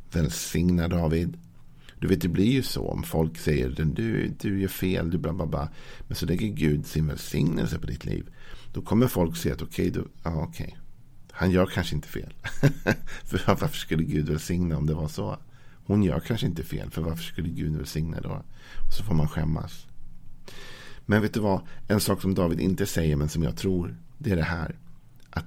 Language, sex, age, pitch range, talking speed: Swedish, male, 50-69, 80-100 Hz, 205 wpm